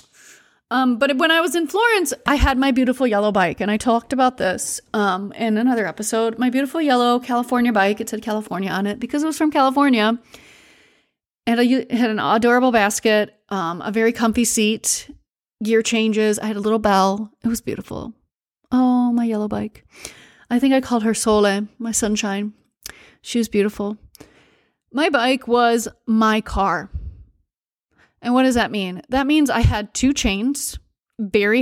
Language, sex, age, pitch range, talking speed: English, female, 30-49, 210-255 Hz, 170 wpm